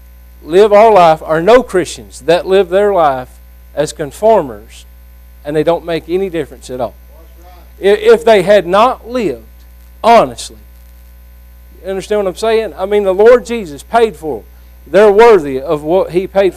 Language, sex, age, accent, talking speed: English, male, 50-69, American, 160 wpm